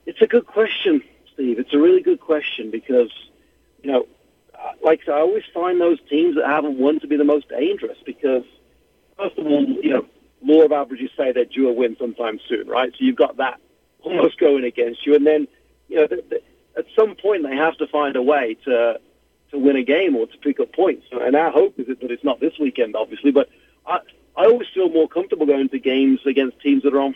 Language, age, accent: English, 50-69, British